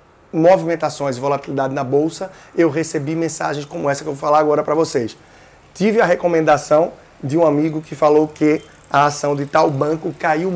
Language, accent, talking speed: Portuguese, Brazilian, 180 wpm